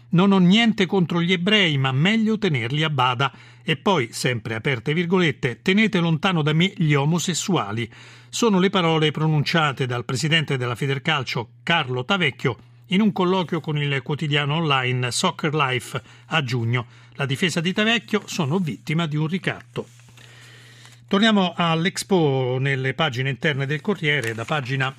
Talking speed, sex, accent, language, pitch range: 145 wpm, male, native, Italian, 125-175 Hz